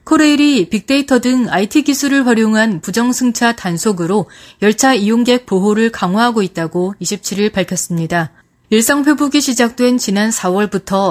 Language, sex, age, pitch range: Korean, female, 30-49, 195-275 Hz